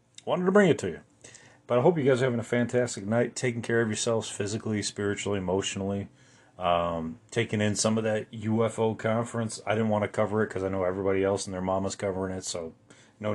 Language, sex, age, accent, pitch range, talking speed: English, male, 30-49, American, 100-125 Hz, 220 wpm